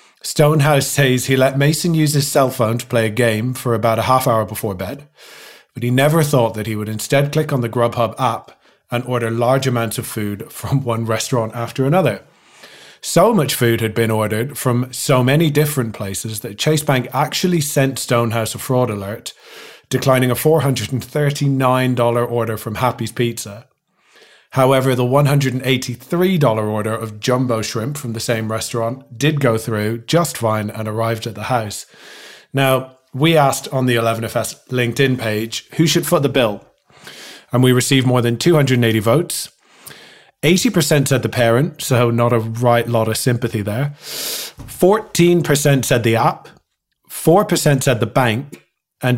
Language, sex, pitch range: English, male, 115-140 Hz